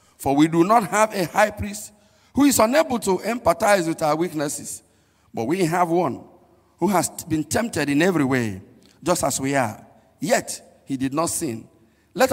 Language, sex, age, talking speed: English, male, 50-69, 180 wpm